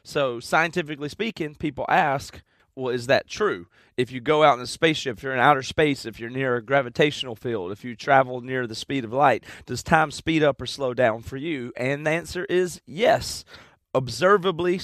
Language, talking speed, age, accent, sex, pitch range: English, 200 wpm, 30-49, American, male, 120-150 Hz